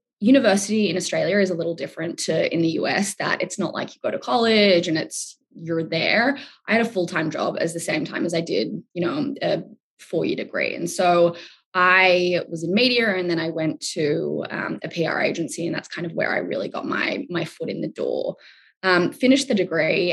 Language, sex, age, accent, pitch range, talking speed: English, female, 20-39, Australian, 165-195 Hz, 220 wpm